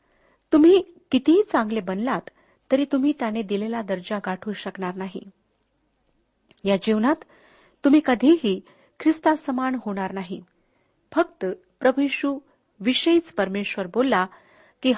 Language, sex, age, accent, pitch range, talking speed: Marathi, female, 40-59, native, 195-275 Hz, 100 wpm